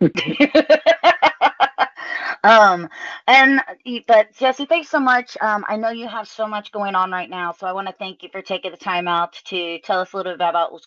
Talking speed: 205 wpm